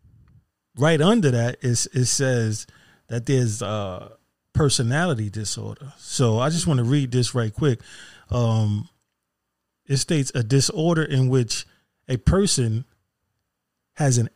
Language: English